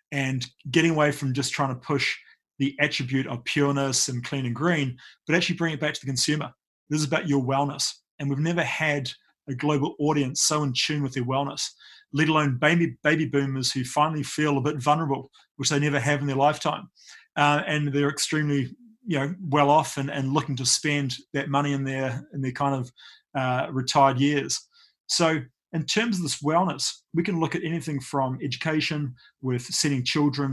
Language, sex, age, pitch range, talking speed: English, male, 30-49, 135-150 Hz, 195 wpm